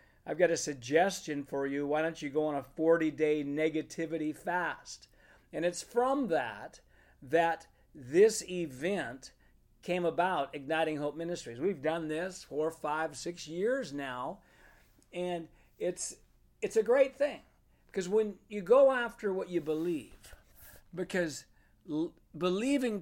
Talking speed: 135 wpm